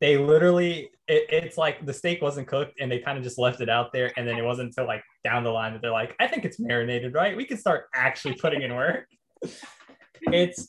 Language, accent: English, American